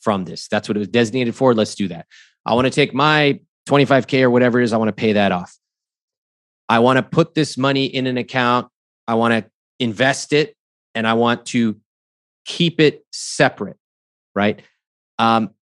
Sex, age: male, 30-49